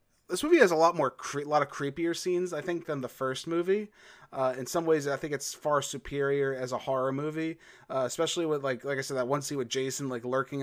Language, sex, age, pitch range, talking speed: English, male, 30-49, 135-160 Hz, 250 wpm